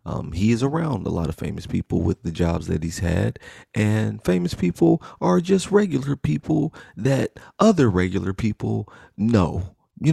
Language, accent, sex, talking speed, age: English, American, male, 165 wpm, 30-49